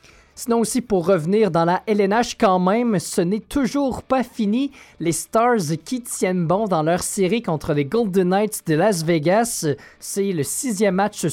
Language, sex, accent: French, male, Canadian